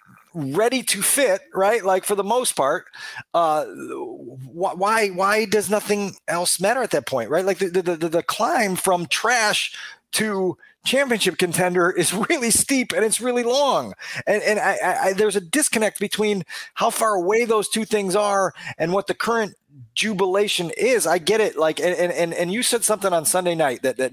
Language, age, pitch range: English, 30-49, 160-210 Hz